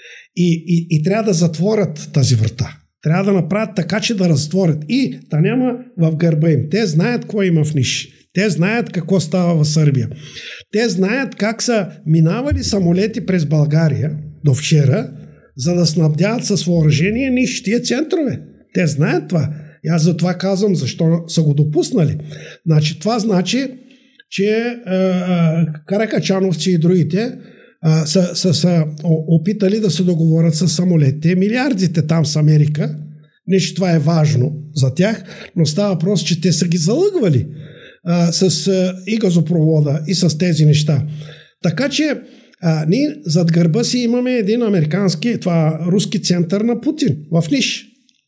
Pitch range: 160-215 Hz